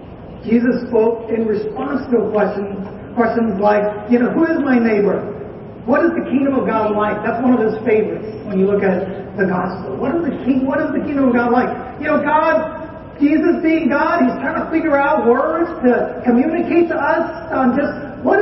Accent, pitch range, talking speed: American, 215-265 Hz, 200 wpm